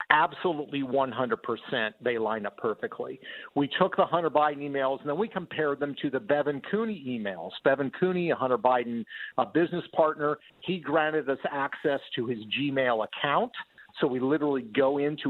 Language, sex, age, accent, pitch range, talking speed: English, male, 50-69, American, 130-160 Hz, 165 wpm